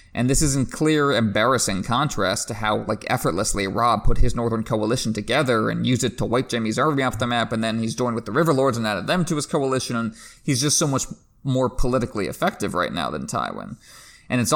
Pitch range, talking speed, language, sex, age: 110-130 Hz, 225 wpm, English, male, 20-39